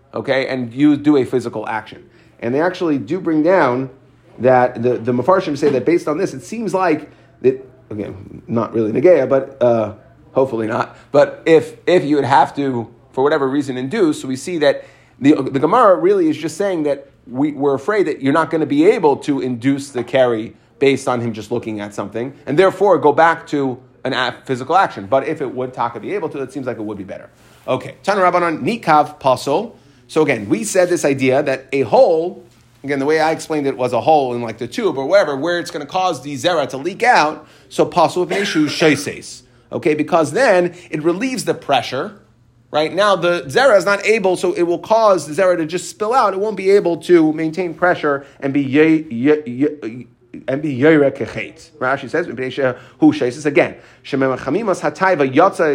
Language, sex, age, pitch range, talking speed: English, male, 30-49, 130-170 Hz, 205 wpm